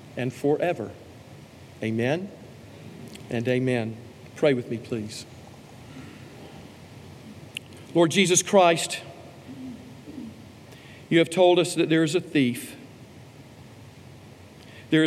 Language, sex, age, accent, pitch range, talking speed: English, male, 50-69, American, 125-165 Hz, 90 wpm